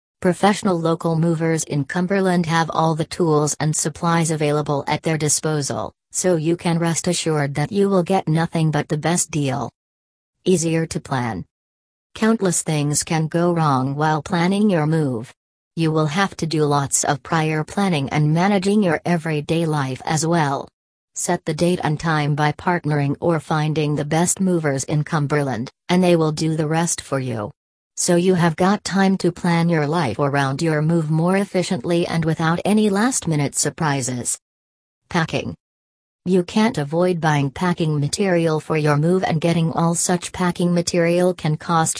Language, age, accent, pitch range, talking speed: English, 40-59, American, 145-175 Hz, 165 wpm